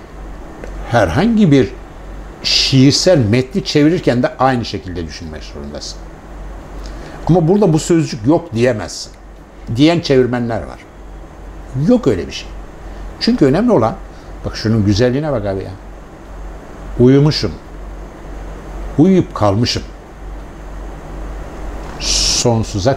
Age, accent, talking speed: 60-79, native, 95 wpm